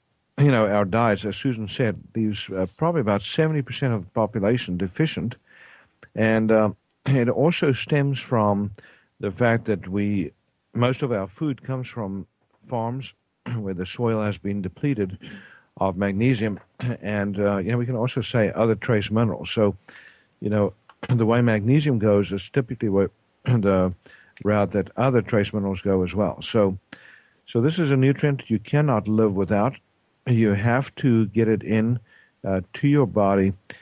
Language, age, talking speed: English, 50-69, 160 wpm